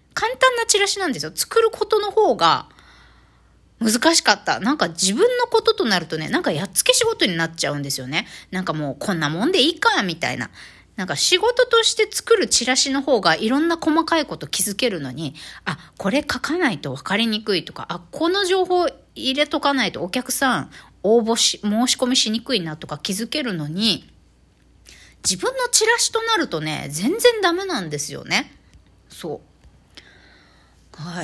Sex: female